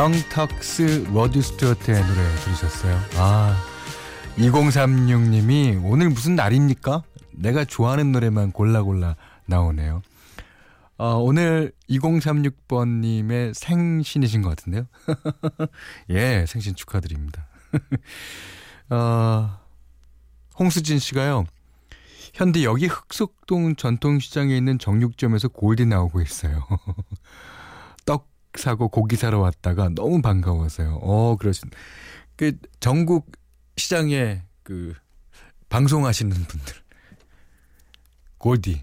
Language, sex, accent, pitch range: Korean, male, native, 85-140 Hz